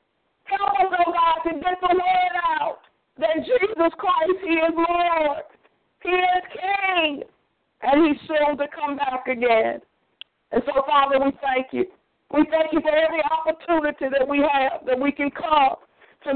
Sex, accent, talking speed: female, American, 165 wpm